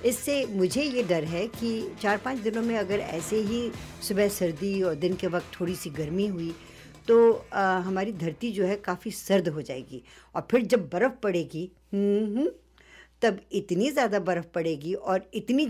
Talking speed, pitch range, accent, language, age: 175 wpm, 170-210 Hz, Indian, English, 60-79